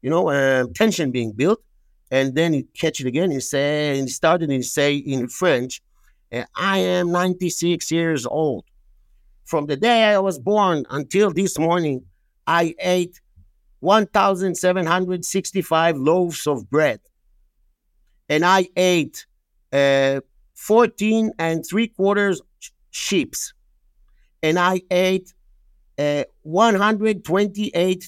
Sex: male